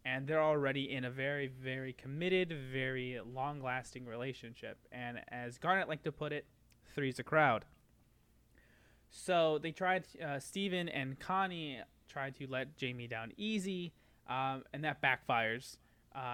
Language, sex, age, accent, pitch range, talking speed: English, male, 20-39, American, 125-145 Hz, 145 wpm